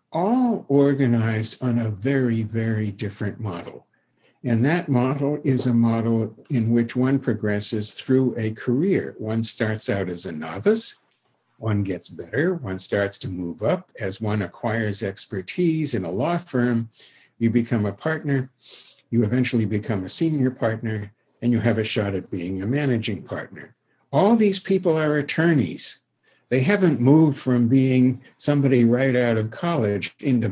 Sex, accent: male, American